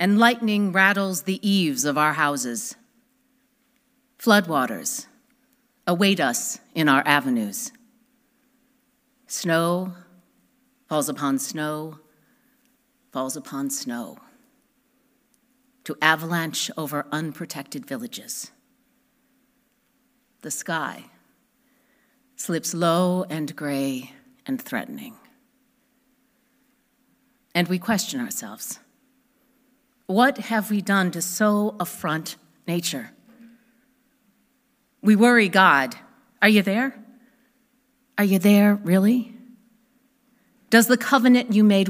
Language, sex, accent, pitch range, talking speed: English, female, American, 190-255 Hz, 85 wpm